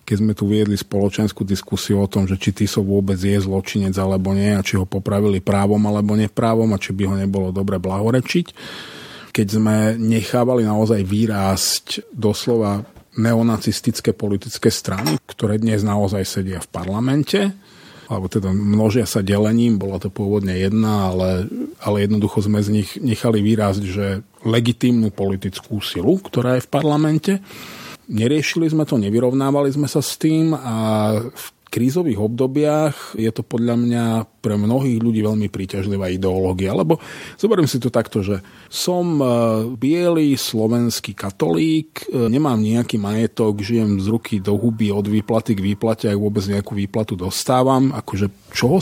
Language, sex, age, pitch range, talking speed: Slovak, male, 40-59, 100-120 Hz, 150 wpm